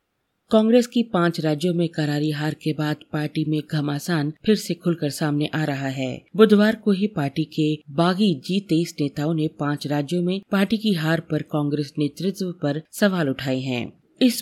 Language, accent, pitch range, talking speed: Hindi, native, 150-185 Hz, 175 wpm